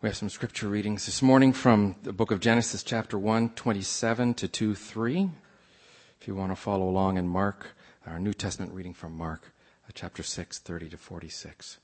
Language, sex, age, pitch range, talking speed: English, male, 50-69, 85-115 Hz, 190 wpm